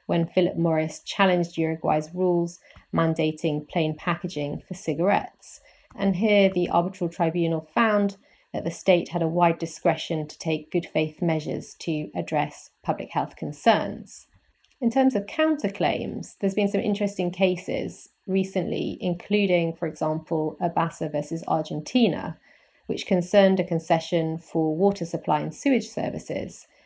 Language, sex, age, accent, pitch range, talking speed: English, female, 30-49, British, 165-195 Hz, 135 wpm